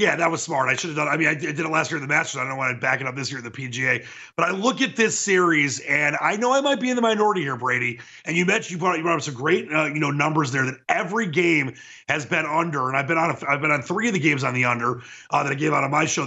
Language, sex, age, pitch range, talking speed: English, male, 30-49, 150-195 Hz, 340 wpm